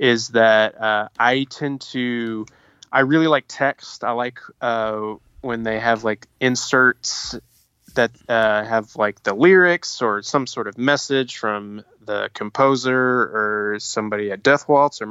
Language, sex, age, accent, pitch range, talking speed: English, male, 20-39, American, 105-130 Hz, 150 wpm